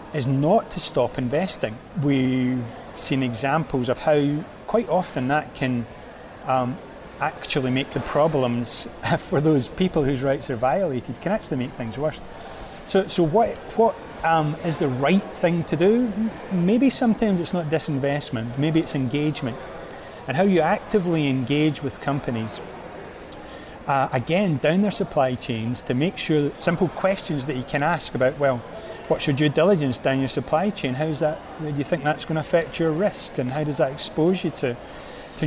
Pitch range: 130-165 Hz